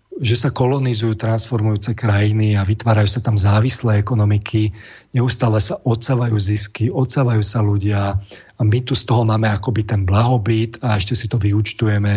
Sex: male